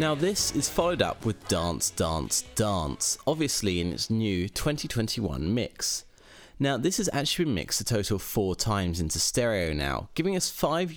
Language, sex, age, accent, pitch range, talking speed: English, male, 30-49, British, 90-155 Hz, 175 wpm